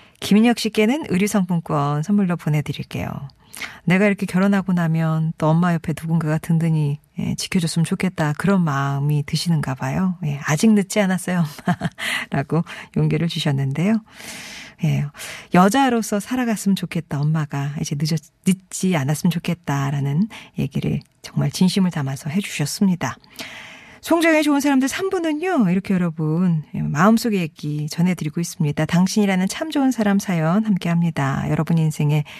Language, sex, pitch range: Korean, female, 155-205 Hz